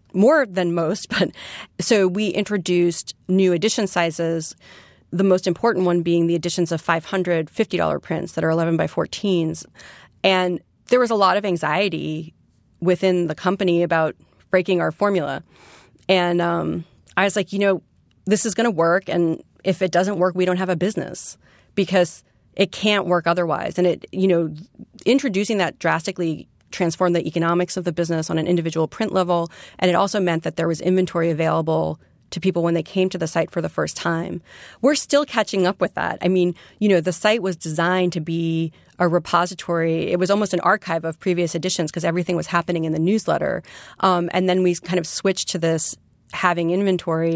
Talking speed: 195 wpm